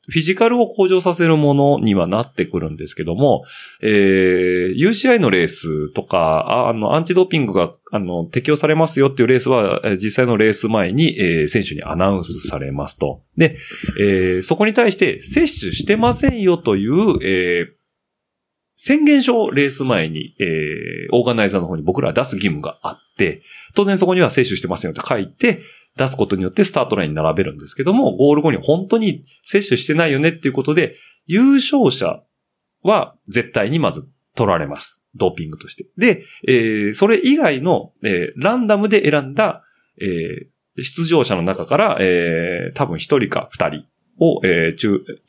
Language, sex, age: Japanese, male, 30-49